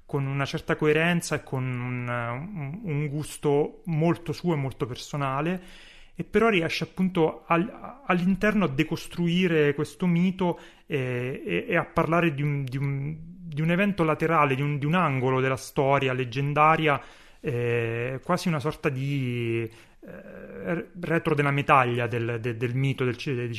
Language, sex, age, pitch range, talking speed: Italian, male, 30-49, 125-165 Hz, 150 wpm